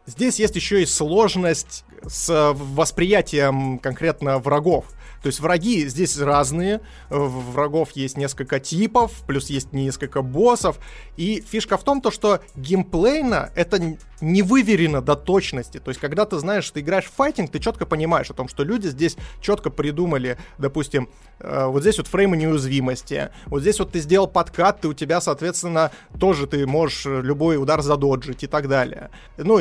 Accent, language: native, Russian